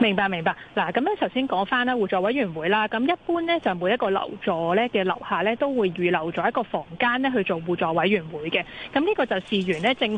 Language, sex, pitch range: Chinese, female, 180-245 Hz